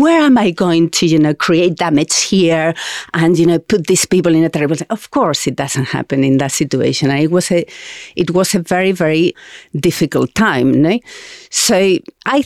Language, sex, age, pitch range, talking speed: English, female, 40-59, 165-225 Hz, 195 wpm